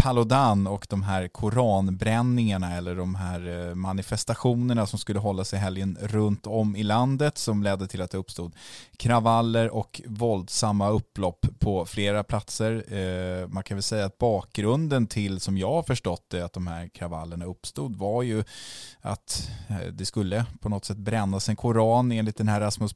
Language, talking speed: English, 160 wpm